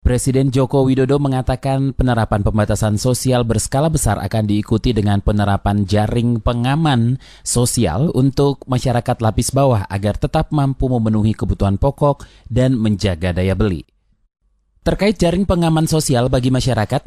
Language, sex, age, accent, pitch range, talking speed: Indonesian, male, 30-49, native, 105-135 Hz, 125 wpm